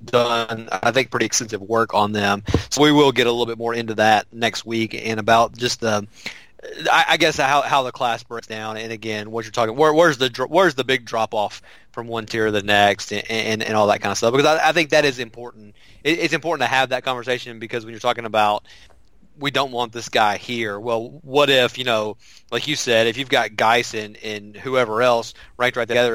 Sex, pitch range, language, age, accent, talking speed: male, 110-130 Hz, English, 30-49, American, 240 wpm